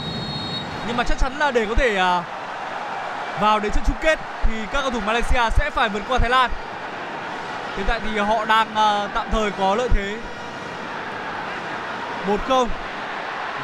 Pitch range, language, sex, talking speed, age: 195-245 Hz, Vietnamese, male, 155 wpm, 20-39